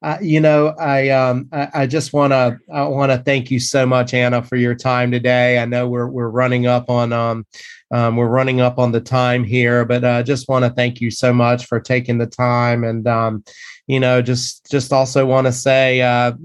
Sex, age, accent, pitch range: male, 30-49, American, 120-135 Hz